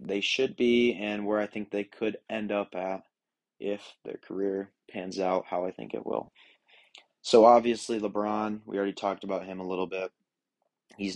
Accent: American